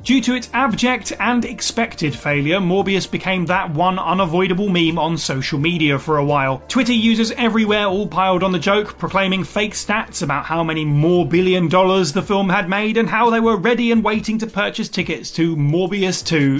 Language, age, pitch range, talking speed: English, 30-49, 165-225 Hz, 190 wpm